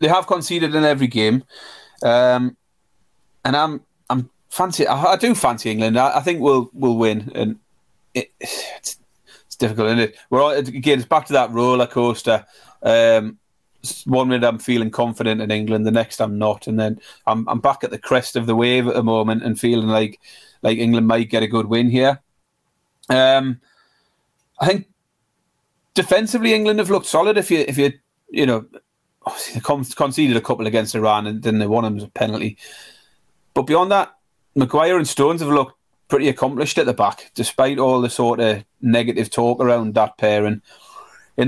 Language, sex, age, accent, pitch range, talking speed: English, male, 30-49, British, 110-140 Hz, 185 wpm